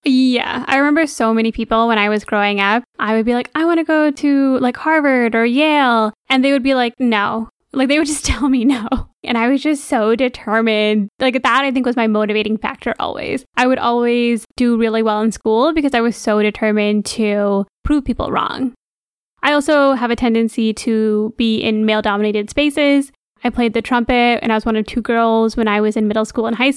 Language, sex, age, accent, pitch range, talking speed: English, female, 10-29, American, 220-265 Hz, 220 wpm